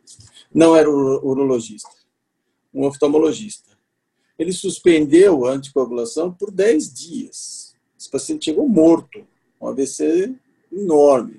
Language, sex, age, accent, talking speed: Portuguese, male, 50-69, Brazilian, 100 wpm